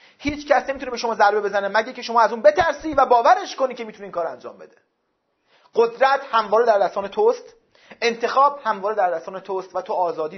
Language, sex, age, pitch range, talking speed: Persian, male, 40-59, 185-260 Hz, 200 wpm